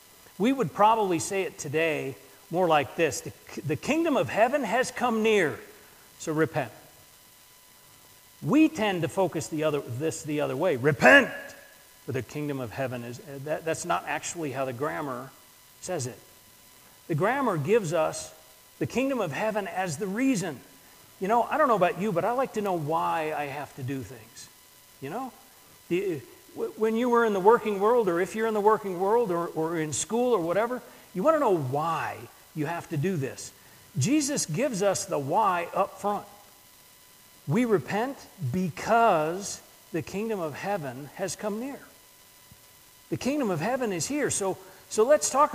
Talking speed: 175 wpm